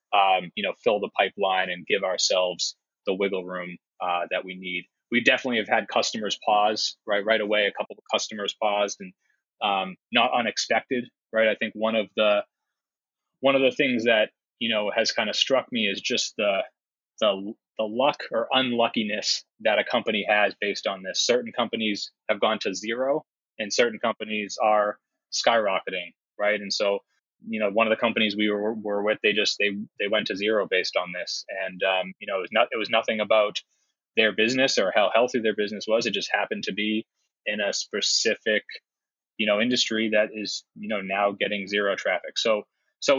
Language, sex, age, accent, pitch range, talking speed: English, male, 20-39, American, 100-110 Hz, 195 wpm